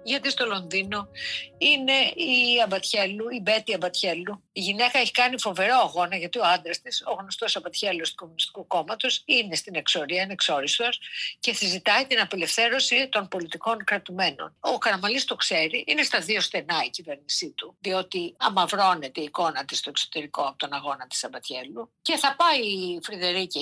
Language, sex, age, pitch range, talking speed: Greek, female, 50-69, 175-265 Hz, 165 wpm